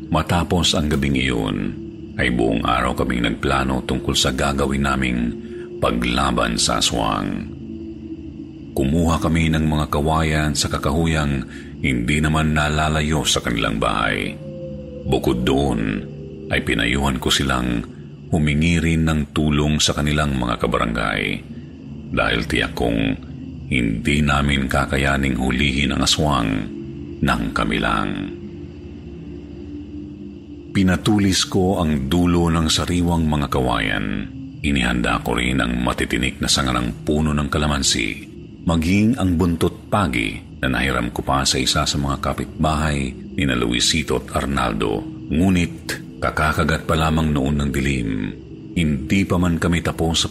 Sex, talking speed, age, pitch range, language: male, 125 wpm, 40-59, 70-85 Hz, Filipino